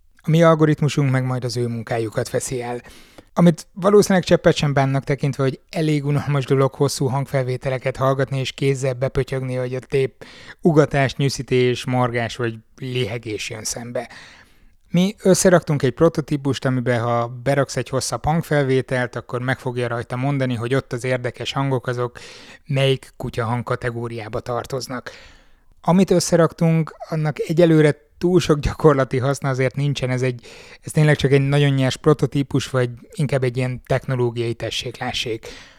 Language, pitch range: Hungarian, 125-145 Hz